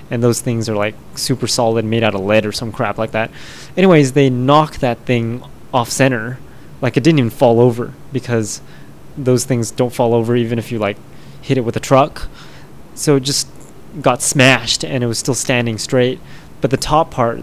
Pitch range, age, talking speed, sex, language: 115-135 Hz, 20-39, 205 wpm, male, English